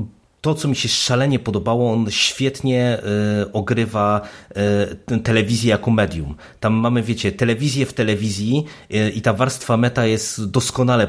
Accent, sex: native, male